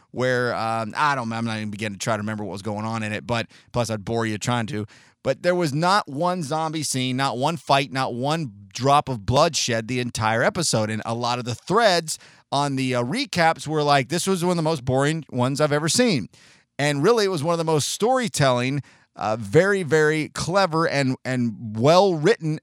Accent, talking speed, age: American, 215 wpm, 30-49